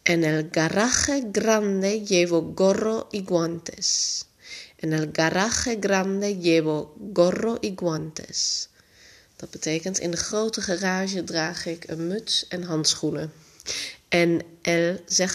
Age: 30-49